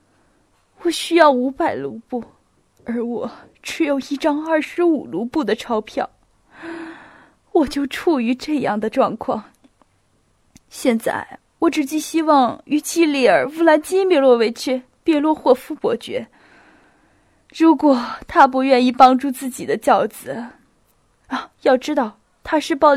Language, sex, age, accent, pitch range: Chinese, female, 10-29, native, 245-315 Hz